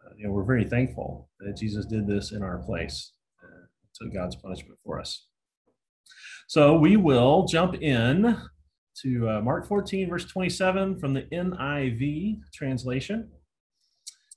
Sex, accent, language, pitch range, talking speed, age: male, American, English, 100-165 Hz, 140 wpm, 30-49